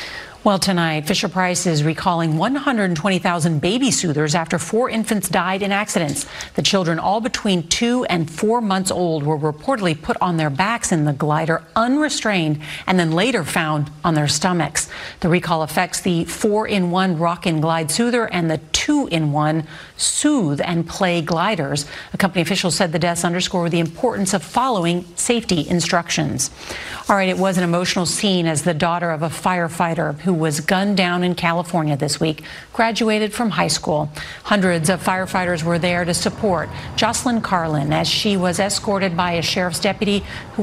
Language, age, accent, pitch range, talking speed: English, 40-59, American, 165-200 Hz, 170 wpm